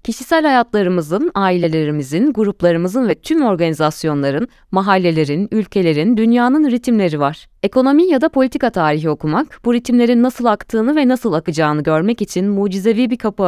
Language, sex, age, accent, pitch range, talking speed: Turkish, female, 30-49, native, 160-245 Hz, 135 wpm